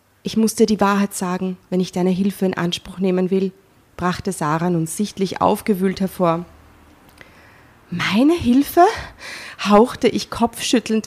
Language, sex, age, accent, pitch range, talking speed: German, female, 30-49, German, 185-225 Hz, 130 wpm